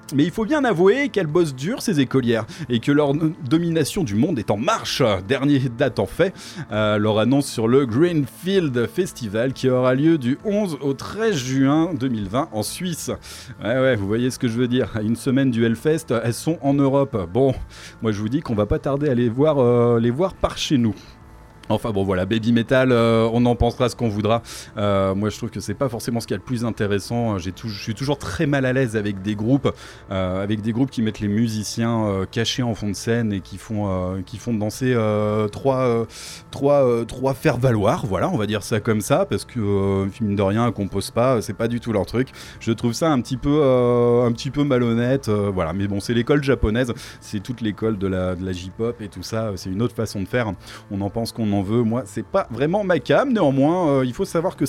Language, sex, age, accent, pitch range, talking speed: French, male, 30-49, French, 105-135 Hz, 240 wpm